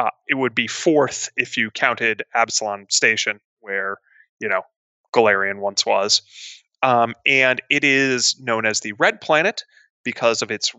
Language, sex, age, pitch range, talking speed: English, male, 20-39, 115-165 Hz, 155 wpm